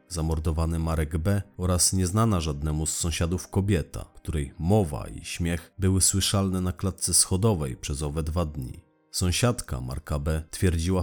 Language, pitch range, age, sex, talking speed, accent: Polish, 80-95 Hz, 30-49, male, 140 wpm, native